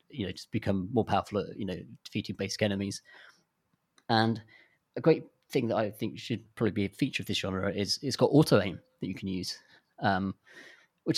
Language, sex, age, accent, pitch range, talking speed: English, male, 30-49, British, 100-115 Hz, 205 wpm